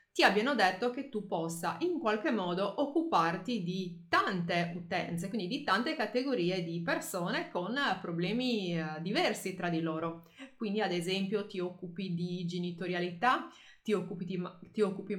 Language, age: Italian, 20-39